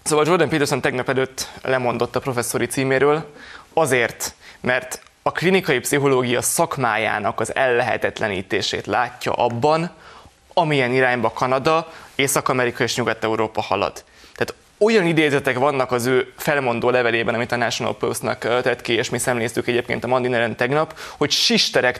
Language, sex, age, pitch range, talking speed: Hungarian, male, 20-39, 125-155 Hz, 130 wpm